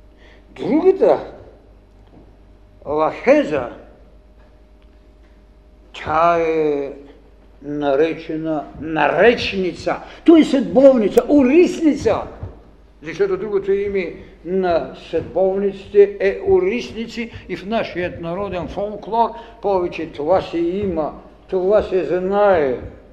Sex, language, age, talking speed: male, Bulgarian, 60-79, 75 wpm